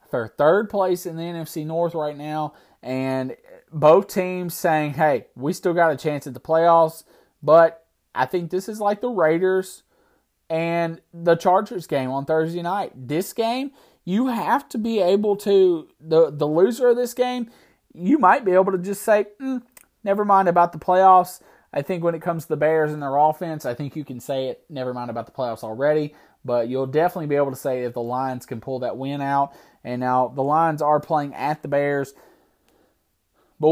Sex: male